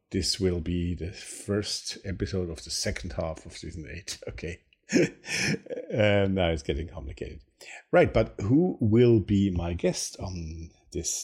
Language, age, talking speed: English, 50-69, 150 wpm